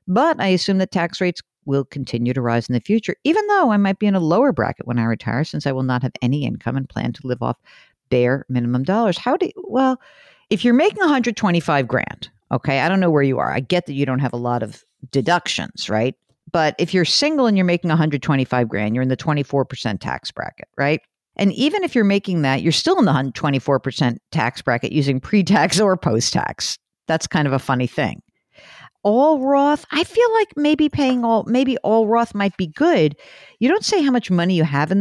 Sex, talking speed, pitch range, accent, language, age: female, 220 wpm, 140-235 Hz, American, English, 50-69